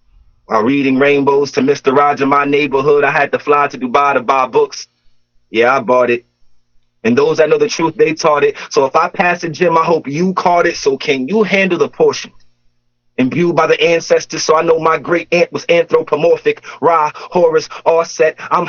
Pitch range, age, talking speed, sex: 115-175 Hz, 30-49, 205 wpm, male